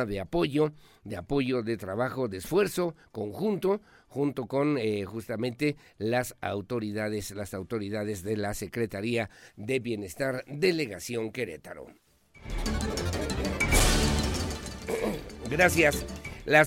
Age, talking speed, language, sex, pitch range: 50-69, 95 wpm, Spanish, male, 110-150 Hz